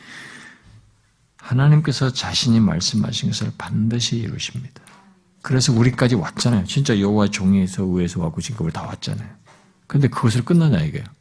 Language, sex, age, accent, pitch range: Korean, male, 50-69, native, 105-145 Hz